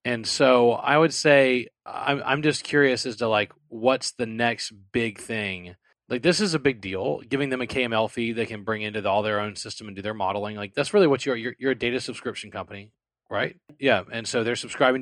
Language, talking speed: English, 225 wpm